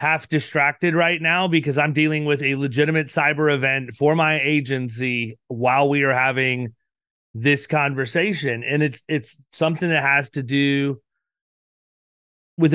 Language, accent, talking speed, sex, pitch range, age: English, American, 140 wpm, male, 130-160 Hz, 30-49